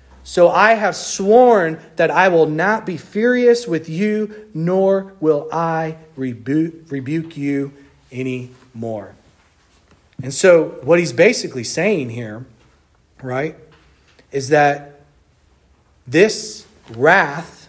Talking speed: 105 wpm